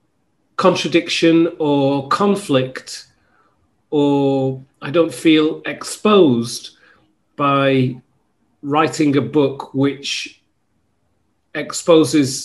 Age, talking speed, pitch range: 40-59, 65 wpm, 125-155 Hz